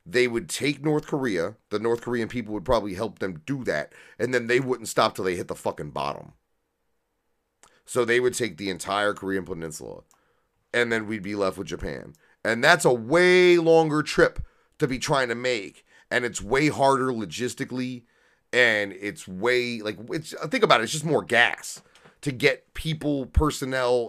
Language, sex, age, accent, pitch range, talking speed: English, male, 30-49, American, 110-155 Hz, 180 wpm